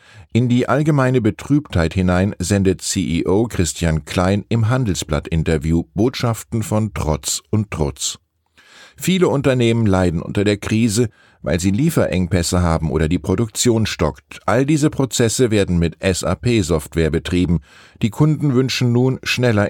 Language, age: German, 10-29